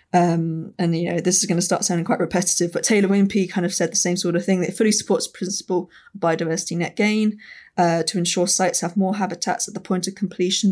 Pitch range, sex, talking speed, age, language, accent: 170-185 Hz, female, 250 wpm, 20-39, English, British